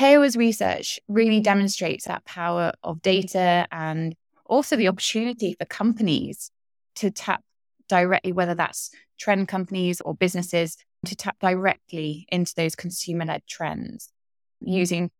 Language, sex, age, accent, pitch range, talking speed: English, female, 20-39, British, 165-195 Hz, 120 wpm